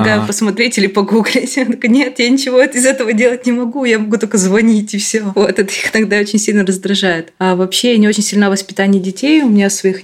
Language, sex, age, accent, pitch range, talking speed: Russian, female, 20-39, native, 175-215 Hz, 210 wpm